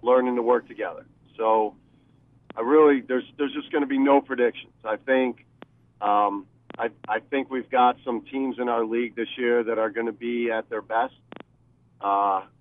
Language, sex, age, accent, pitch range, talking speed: English, male, 40-59, American, 115-130 Hz, 185 wpm